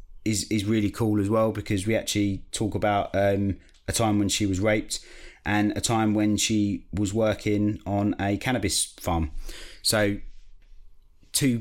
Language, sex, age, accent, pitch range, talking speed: English, male, 30-49, British, 100-115 Hz, 160 wpm